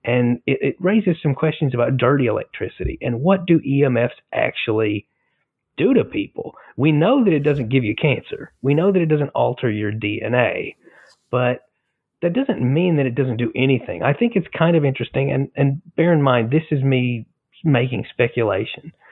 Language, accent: English, American